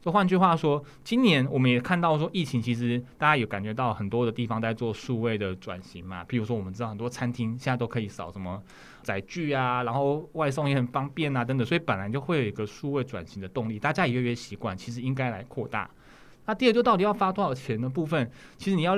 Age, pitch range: 20-39, 110-150 Hz